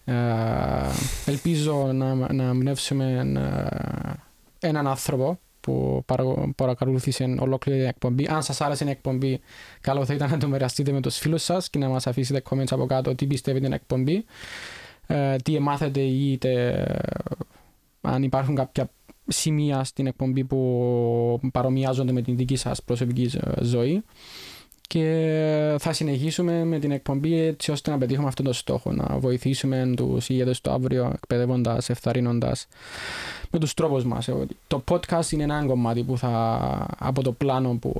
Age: 20-39